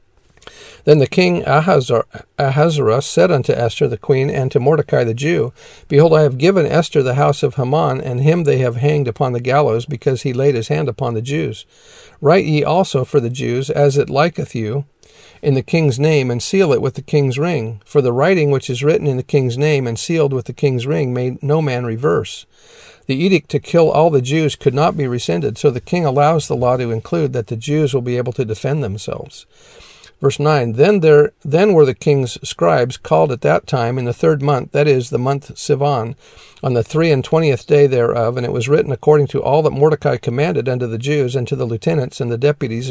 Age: 50-69